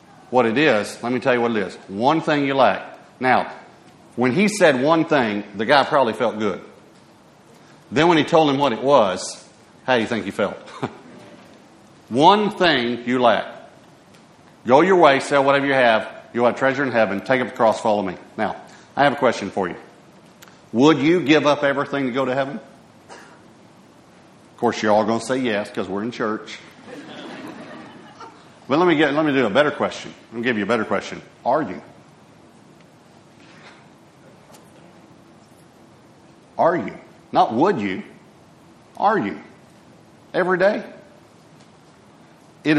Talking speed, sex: 165 wpm, male